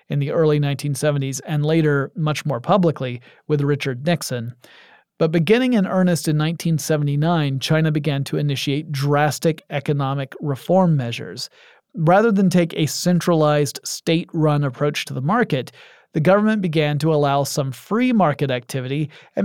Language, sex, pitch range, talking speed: English, male, 140-175 Hz, 140 wpm